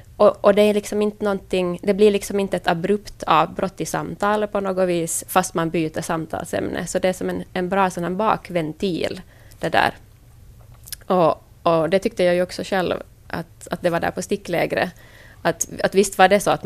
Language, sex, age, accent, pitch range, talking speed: Finnish, female, 20-39, Swedish, 170-205 Hz, 200 wpm